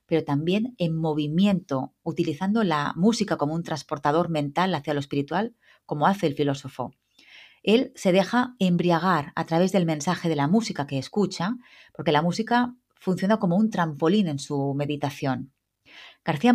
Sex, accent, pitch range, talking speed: female, Spanish, 155-205 Hz, 150 wpm